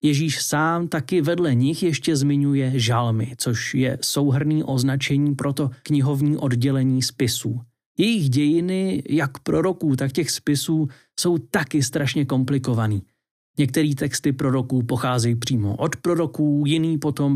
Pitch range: 130-165 Hz